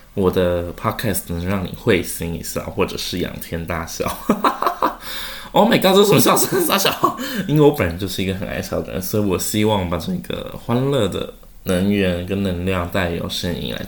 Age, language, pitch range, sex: 20-39, Chinese, 90-125 Hz, male